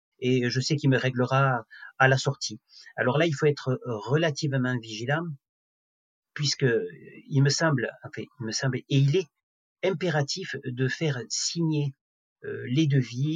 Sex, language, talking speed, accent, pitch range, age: male, French, 150 wpm, French, 125-150 Hz, 40-59